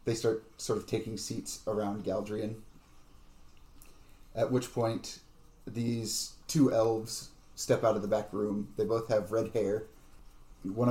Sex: male